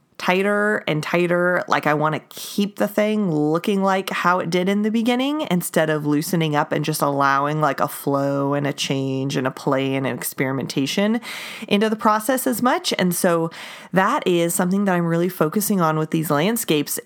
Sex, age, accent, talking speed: female, 30-49, American, 195 wpm